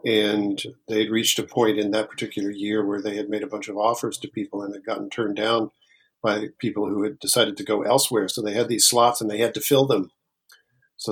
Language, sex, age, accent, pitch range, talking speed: English, male, 50-69, American, 105-125 Hz, 235 wpm